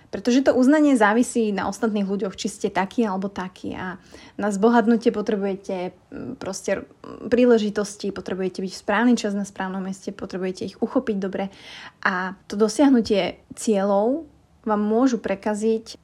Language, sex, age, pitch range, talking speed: Slovak, female, 20-39, 195-230 Hz, 140 wpm